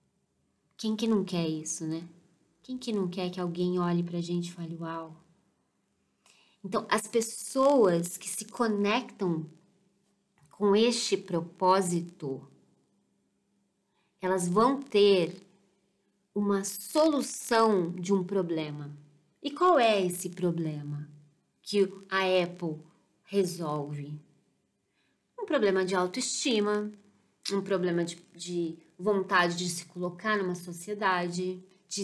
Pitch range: 175-205 Hz